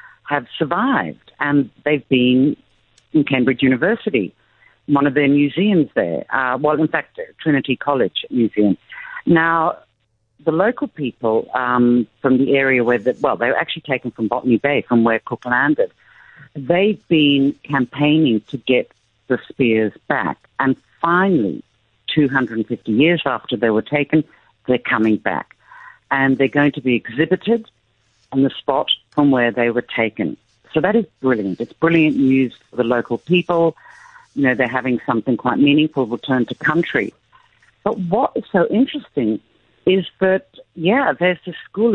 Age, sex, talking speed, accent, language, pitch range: 50-69, female, 150 wpm, British, English, 125-175 Hz